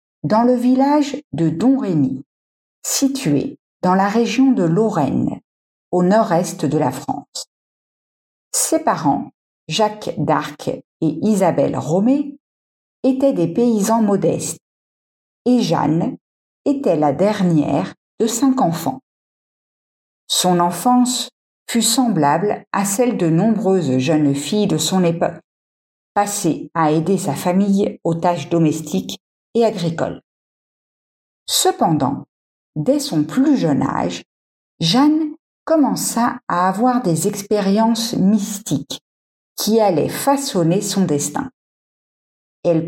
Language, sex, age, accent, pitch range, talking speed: French, female, 50-69, French, 160-235 Hz, 110 wpm